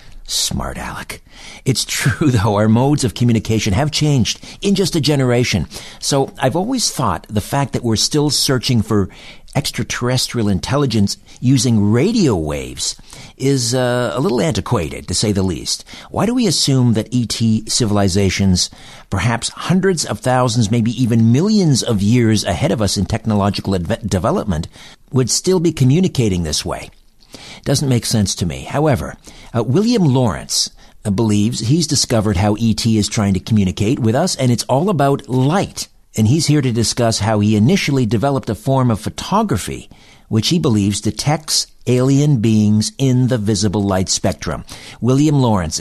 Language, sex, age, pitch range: English, male, 50-69, 100-135 Hz